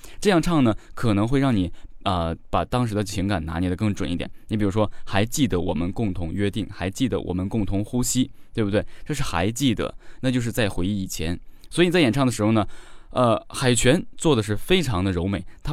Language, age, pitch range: Chinese, 20-39, 90-115 Hz